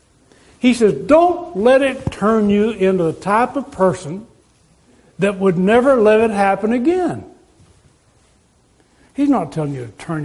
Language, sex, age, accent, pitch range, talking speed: English, male, 60-79, American, 195-265 Hz, 145 wpm